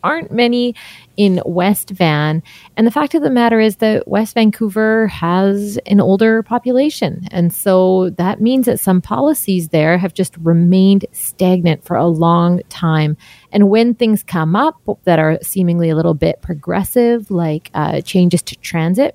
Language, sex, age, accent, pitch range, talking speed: English, female, 30-49, American, 165-215 Hz, 165 wpm